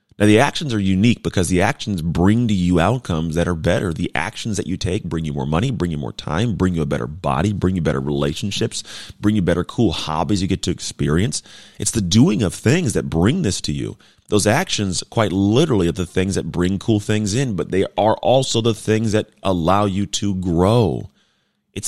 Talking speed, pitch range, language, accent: 220 wpm, 85-110 Hz, English, American